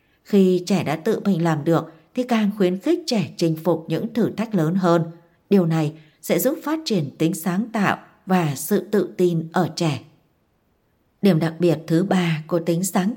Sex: female